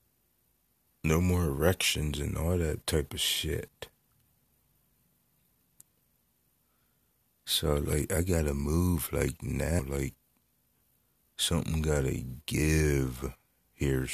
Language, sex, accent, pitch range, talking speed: English, male, American, 65-80 Hz, 100 wpm